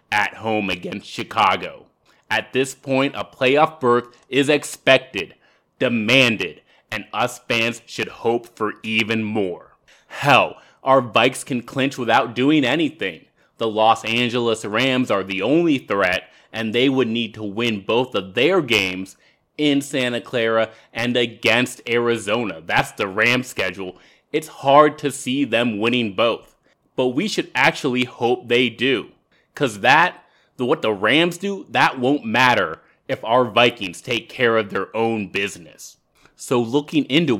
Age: 20-39